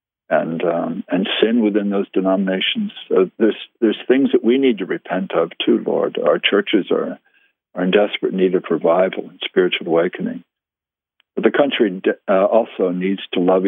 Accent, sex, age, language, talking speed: American, male, 60-79, English, 175 wpm